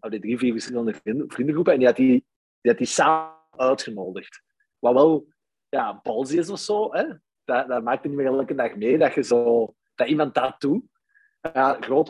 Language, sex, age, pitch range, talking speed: Dutch, male, 30-49, 115-185 Hz, 195 wpm